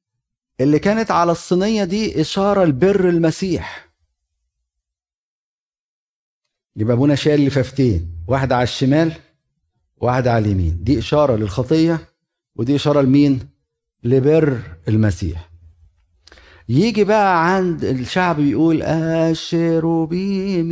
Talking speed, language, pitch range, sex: 95 wpm, Arabic, 100-155 Hz, male